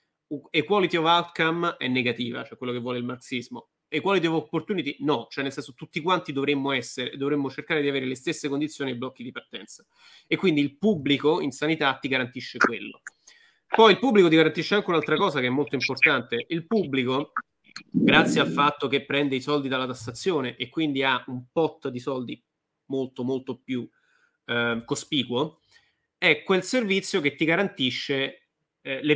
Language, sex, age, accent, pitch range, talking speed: Italian, male, 30-49, native, 130-155 Hz, 175 wpm